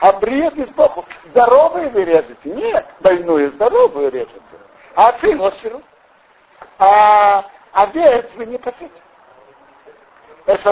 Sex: male